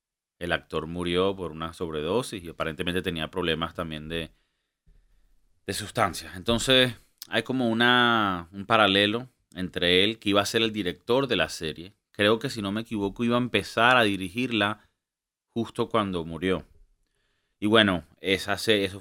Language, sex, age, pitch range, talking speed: Spanish, male, 30-49, 85-105 Hz, 150 wpm